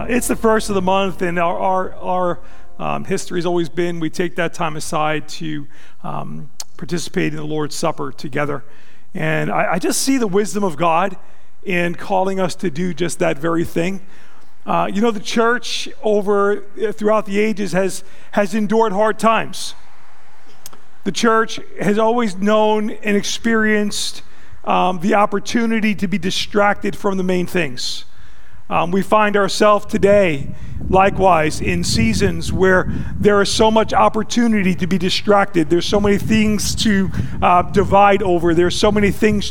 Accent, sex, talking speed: American, male, 160 wpm